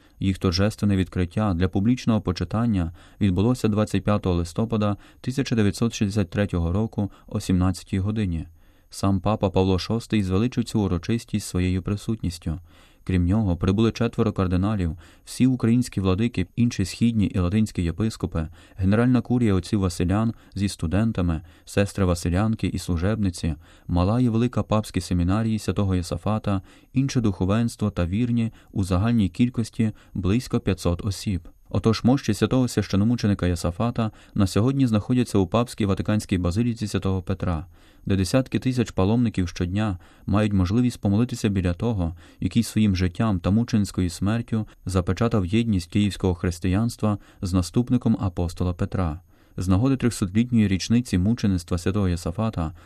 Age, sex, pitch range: 30-49, male, 95-115 Hz